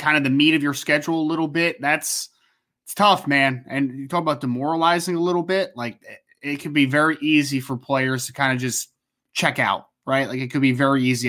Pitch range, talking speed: 125-160 Hz, 235 wpm